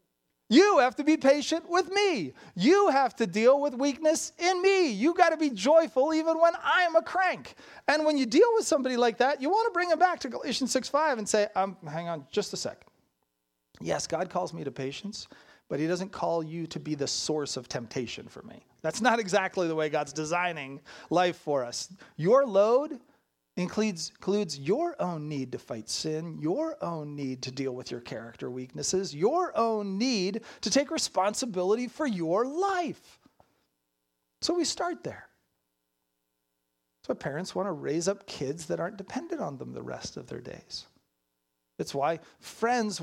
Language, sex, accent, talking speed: English, male, American, 185 wpm